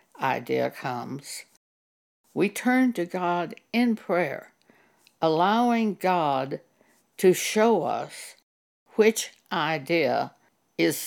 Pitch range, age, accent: 165-235 Hz, 60-79, American